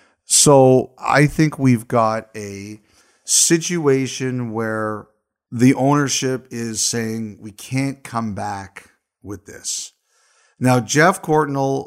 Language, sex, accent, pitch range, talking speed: English, male, American, 110-125 Hz, 105 wpm